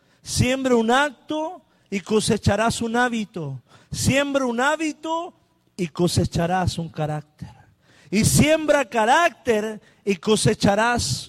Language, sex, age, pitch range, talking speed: Spanish, male, 50-69, 170-245 Hz, 100 wpm